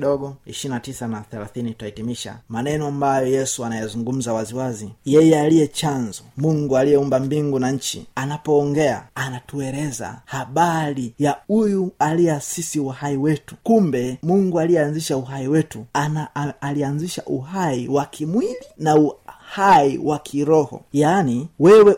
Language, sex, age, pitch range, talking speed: Swahili, male, 30-49, 130-155 Hz, 125 wpm